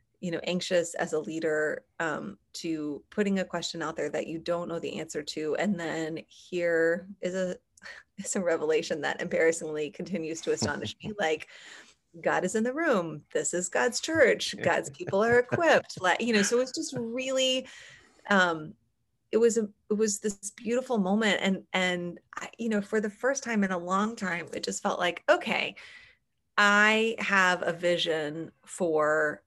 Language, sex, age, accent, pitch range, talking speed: English, female, 30-49, American, 165-215 Hz, 175 wpm